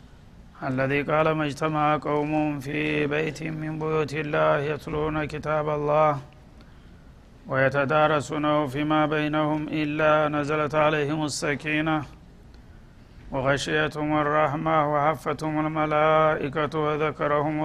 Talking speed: 80 wpm